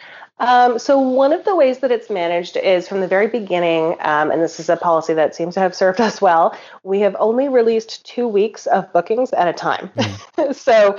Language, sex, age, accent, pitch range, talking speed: English, female, 30-49, American, 165-220 Hz, 215 wpm